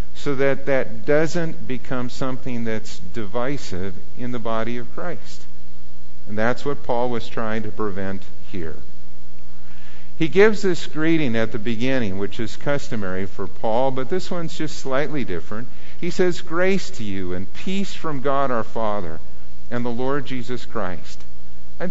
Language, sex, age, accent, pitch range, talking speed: English, male, 50-69, American, 90-140 Hz, 155 wpm